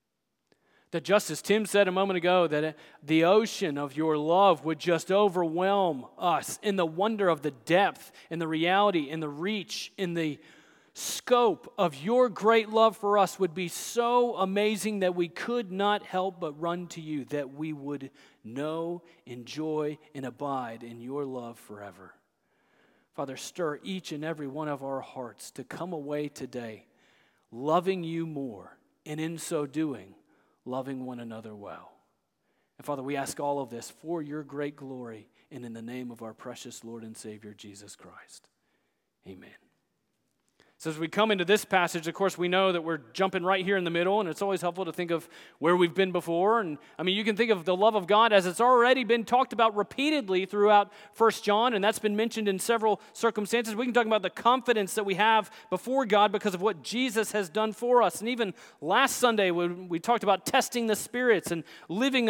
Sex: male